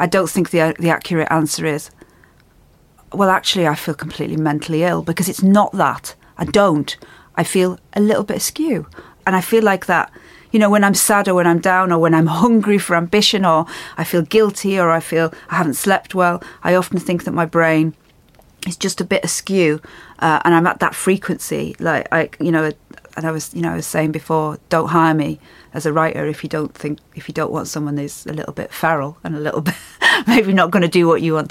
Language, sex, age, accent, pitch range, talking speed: English, female, 40-59, British, 160-190 Hz, 230 wpm